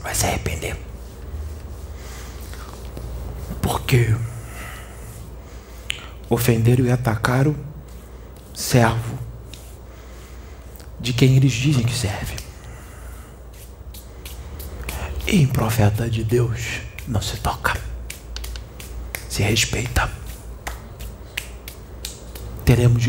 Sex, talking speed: male, 70 wpm